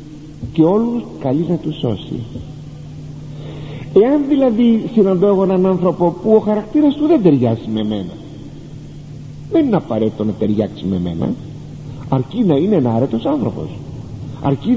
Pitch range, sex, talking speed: 135-210 Hz, male, 130 wpm